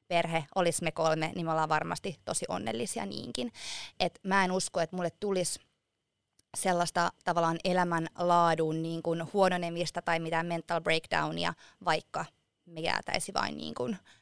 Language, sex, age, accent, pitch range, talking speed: Finnish, female, 20-39, native, 170-200 Hz, 130 wpm